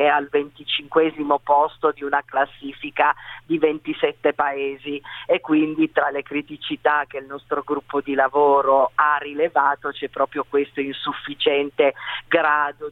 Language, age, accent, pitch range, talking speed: Italian, 40-59, native, 140-200 Hz, 130 wpm